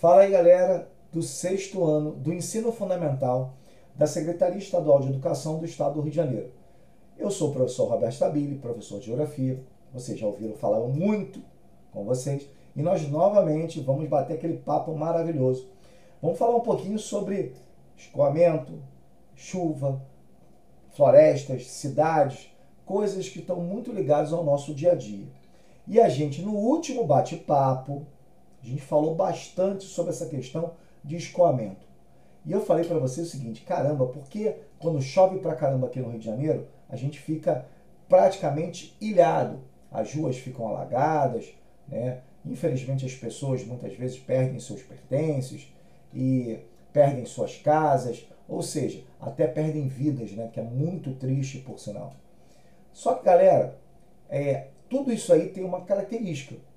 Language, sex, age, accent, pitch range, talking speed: Portuguese, male, 40-59, Brazilian, 130-175 Hz, 150 wpm